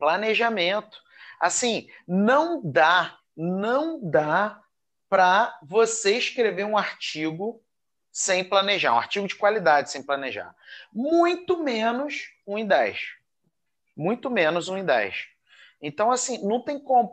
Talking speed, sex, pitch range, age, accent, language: 120 wpm, male, 165-225 Hz, 30-49, Brazilian, Portuguese